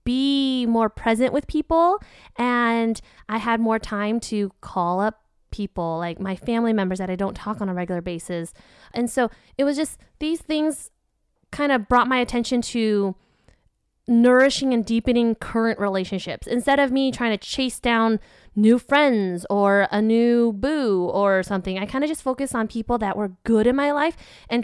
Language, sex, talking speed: English, female, 180 wpm